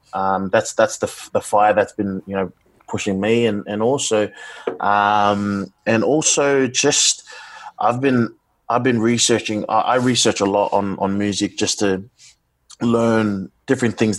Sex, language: male, English